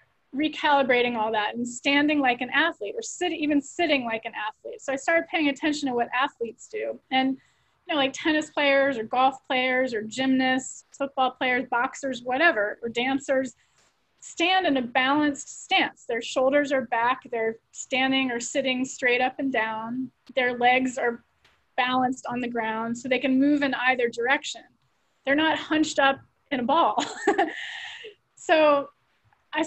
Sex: female